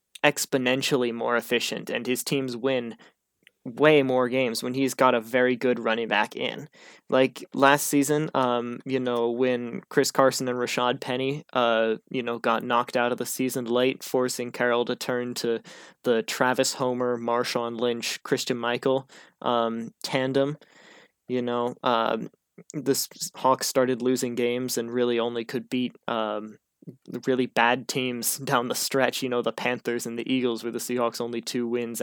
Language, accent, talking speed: English, American, 165 wpm